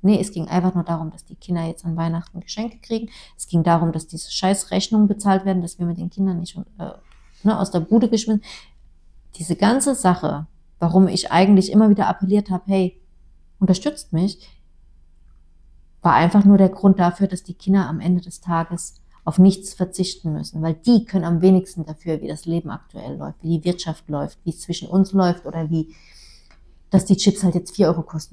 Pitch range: 170-195 Hz